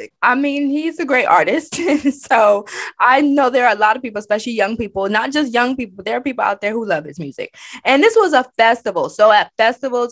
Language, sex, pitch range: English, female, 190-270 Hz